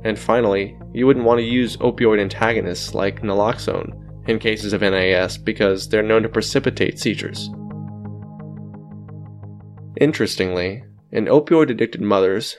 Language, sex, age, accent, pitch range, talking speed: English, male, 20-39, American, 100-120 Hz, 120 wpm